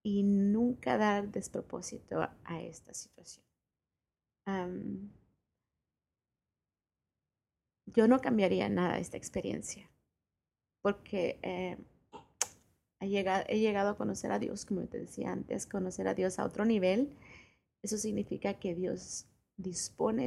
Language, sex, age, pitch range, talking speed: Spanish, female, 30-49, 180-210 Hz, 110 wpm